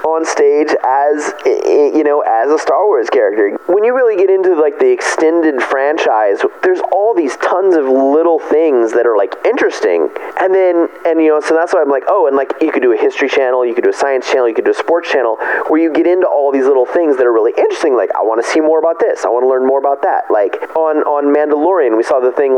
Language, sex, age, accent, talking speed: English, male, 30-49, American, 255 wpm